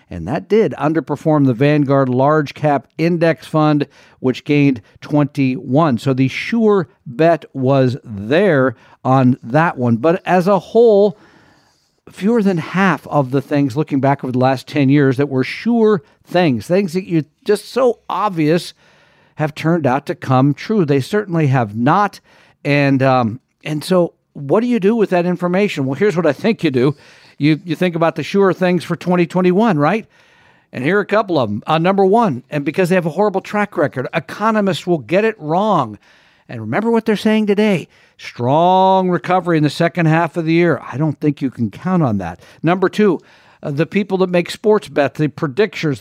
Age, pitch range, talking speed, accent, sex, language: 50-69, 140-185 Hz, 190 wpm, American, male, English